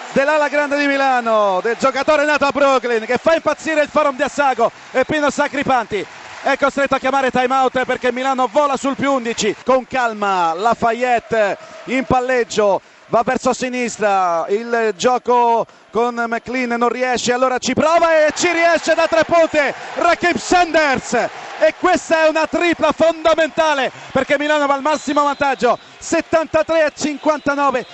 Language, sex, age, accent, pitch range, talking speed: Italian, male, 30-49, native, 250-295 Hz, 155 wpm